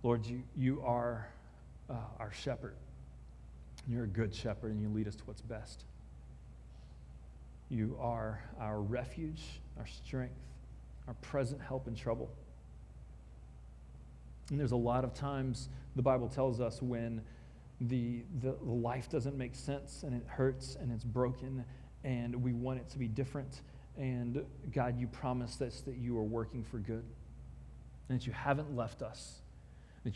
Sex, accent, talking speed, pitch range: male, American, 155 wpm, 80-130 Hz